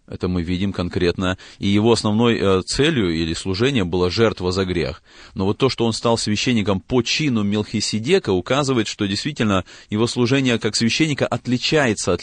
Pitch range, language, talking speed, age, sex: 90-115 Hz, Russian, 160 wpm, 30-49, male